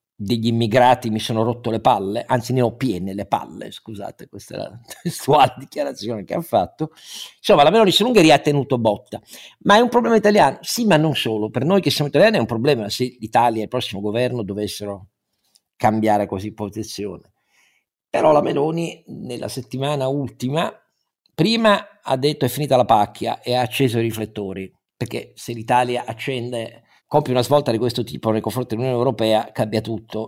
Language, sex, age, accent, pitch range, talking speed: Italian, male, 50-69, native, 110-125 Hz, 180 wpm